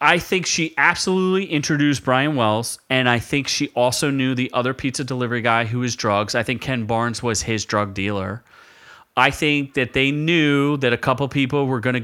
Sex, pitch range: male, 115-140 Hz